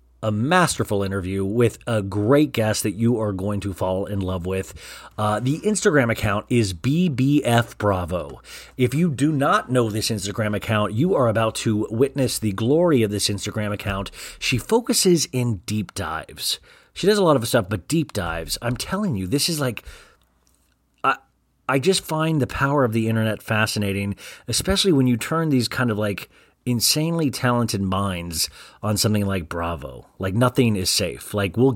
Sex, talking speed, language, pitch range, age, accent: male, 175 wpm, English, 100-140 Hz, 30-49, American